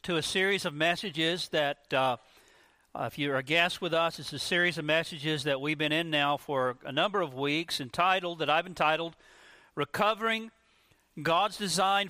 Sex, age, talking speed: male, 40-59, 175 wpm